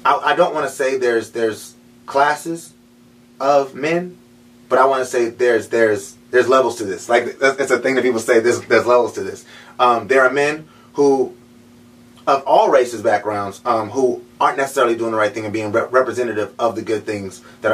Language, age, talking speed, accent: English, 30-49, 200 wpm, American